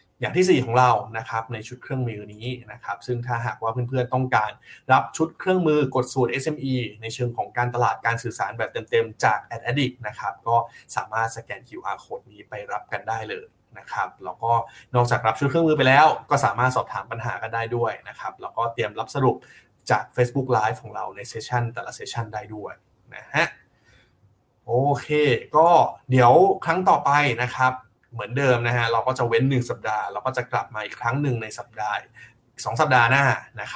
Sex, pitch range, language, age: male, 115-135 Hz, Thai, 20-39